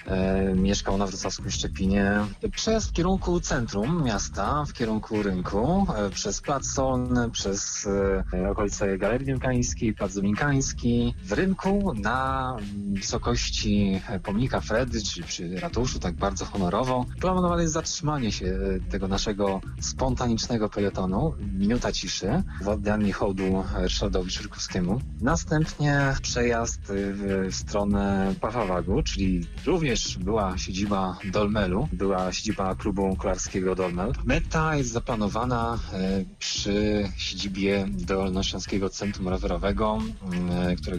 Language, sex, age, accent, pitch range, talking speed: Polish, male, 30-49, native, 95-110 Hz, 105 wpm